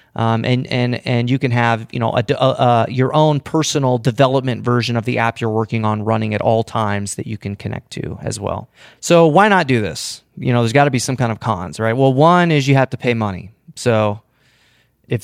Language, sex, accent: English, male, American